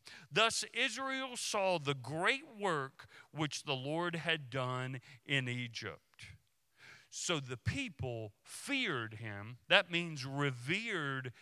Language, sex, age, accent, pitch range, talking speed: English, male, 50-69, American, 110-145 Hz, 110 wpm